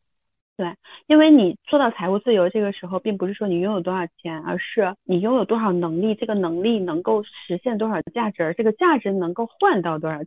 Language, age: Chinese, 30-49